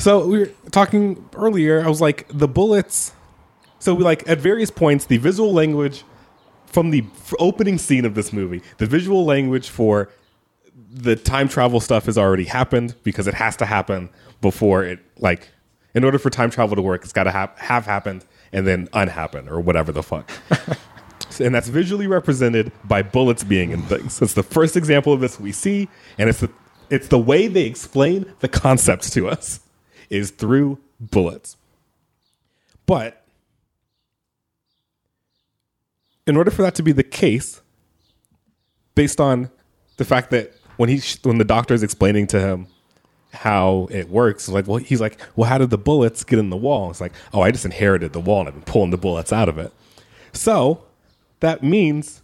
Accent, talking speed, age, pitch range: American, 185 wpm, 30-49, 100-150 Hz